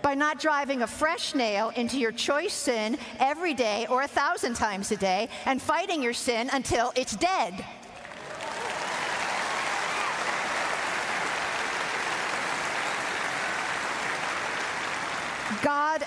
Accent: American